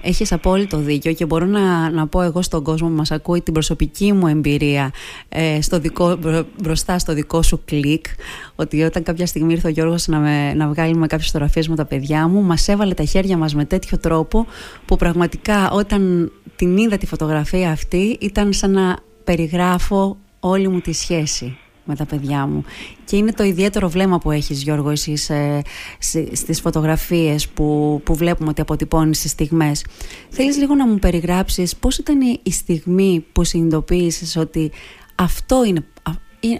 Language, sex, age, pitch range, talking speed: Greek, female, 30-49, 155-185 Hz, 160 wpm